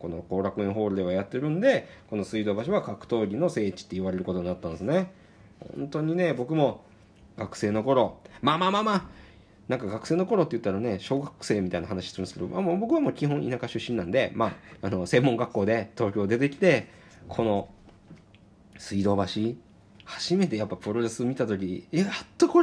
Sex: male